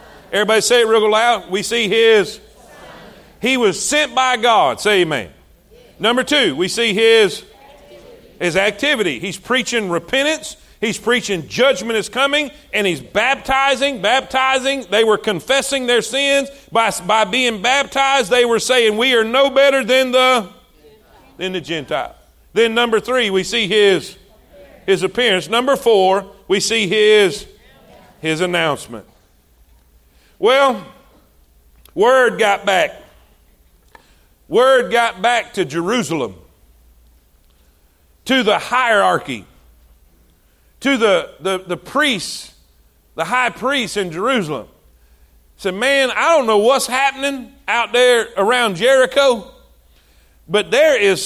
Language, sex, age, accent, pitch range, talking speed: English, male, 40-59, American, 180-265 Hz, 125 wpm